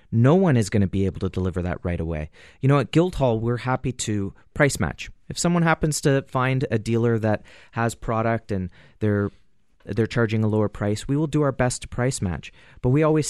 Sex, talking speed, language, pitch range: male, 220 wpm, English, 105-130 Hz